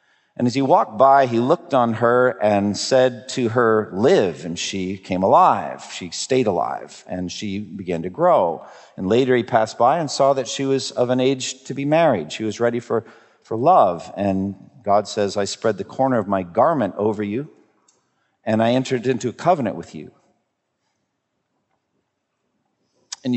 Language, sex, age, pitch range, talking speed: English, male, 40-59, 100-135 Hz, 175 wpm